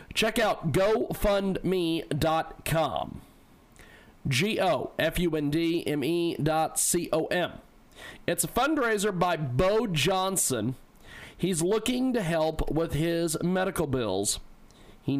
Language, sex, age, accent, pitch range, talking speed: English, male, 40-59, American, 140-185 Hz, 85 wpm